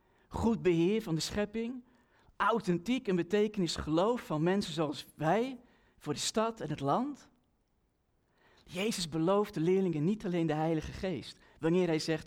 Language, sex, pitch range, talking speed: Dutch, male, 150-200 Hz, 145 wpm